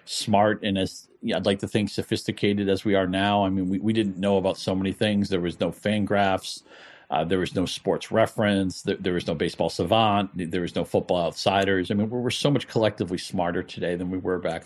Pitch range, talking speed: 85-100 Hz, 230 wpm